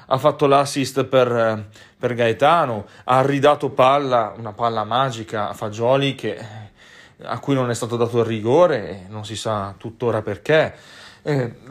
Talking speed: 150 wpm